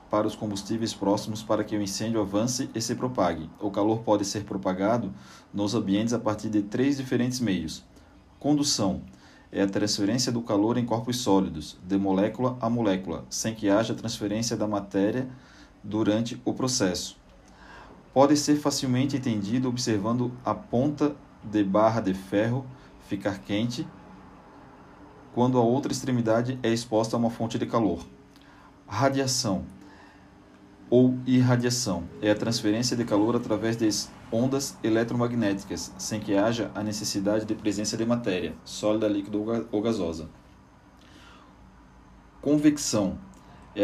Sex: male